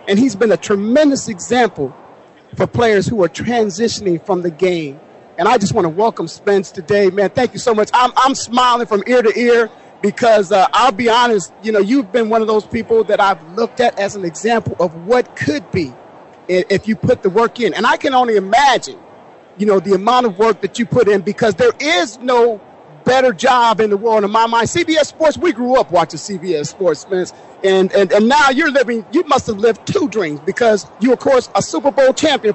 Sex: male